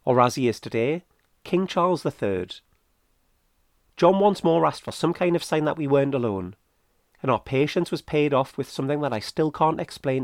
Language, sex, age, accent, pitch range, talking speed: English, male, 40-59, British, 110-180 Hz, 200 wpm